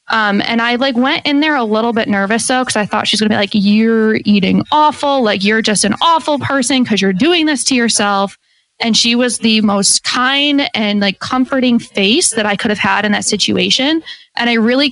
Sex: female